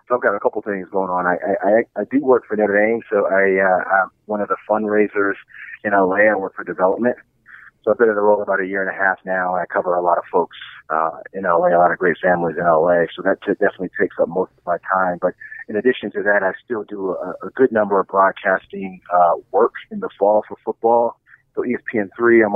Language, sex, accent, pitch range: English, male, American, 95-105 Hz